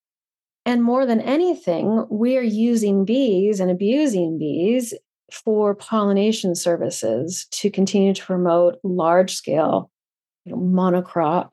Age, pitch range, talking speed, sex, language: 30-49, 185-230 Hz, 105 wpm, female, English